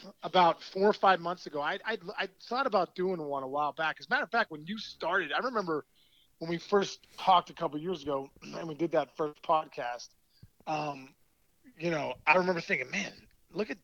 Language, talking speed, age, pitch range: English, 215 wpm, 30-49, 145-180 Hz